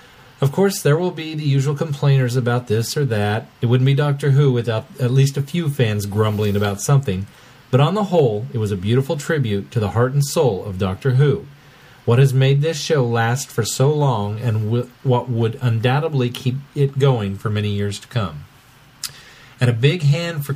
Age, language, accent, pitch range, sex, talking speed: 40-59, English, American, 115-145 Hz, male, 200 wpm